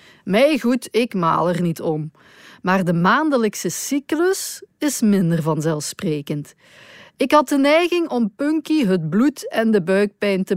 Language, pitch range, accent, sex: Dutch, 180-260 Hz, Dutch, female